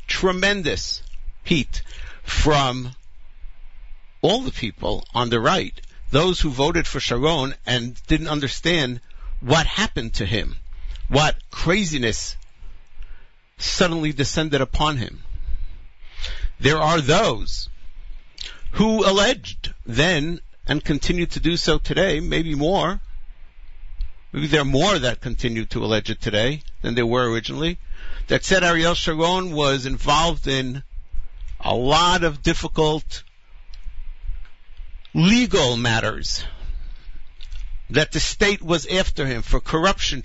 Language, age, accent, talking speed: English, 60-79, American, 115 wpm